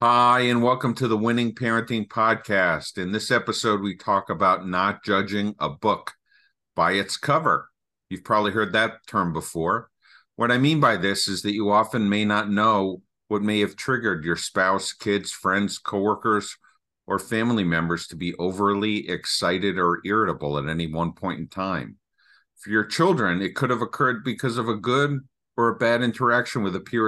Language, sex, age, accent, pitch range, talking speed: English, male, 50-69, American, 90-115 Hz, 180 wpm